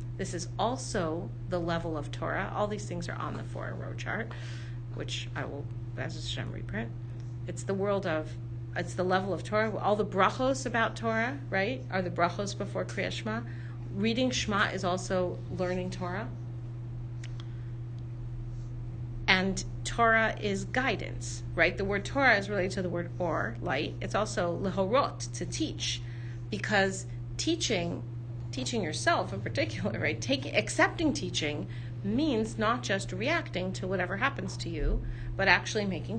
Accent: American